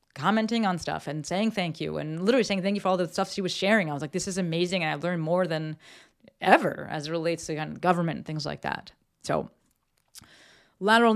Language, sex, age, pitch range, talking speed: English, female, 30-49, 155-200 Hz, 225 wpm